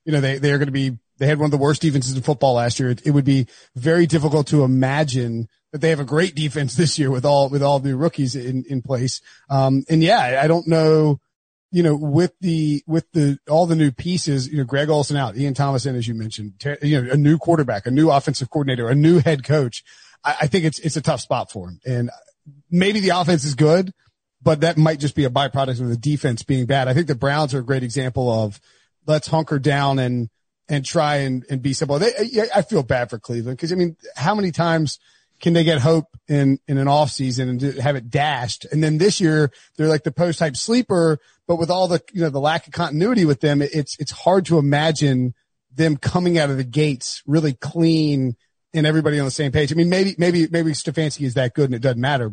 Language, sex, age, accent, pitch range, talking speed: English, male, 30-49, American, 135-160 Hz, 240 wpm